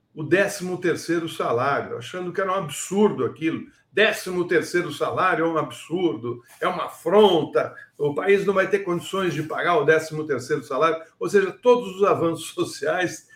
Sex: male